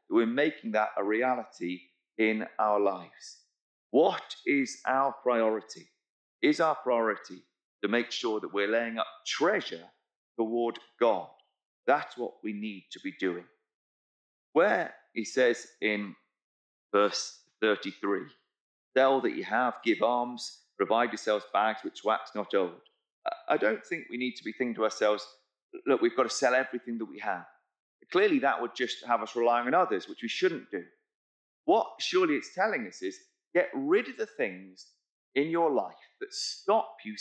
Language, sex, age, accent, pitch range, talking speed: English, male, 40-59, British, 105-170 Hz, 160 wpm